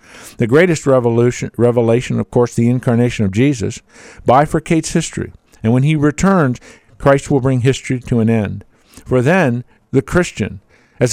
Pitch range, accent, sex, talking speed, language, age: 115-160 Hz, American, male, 150 wpm, English, 50-69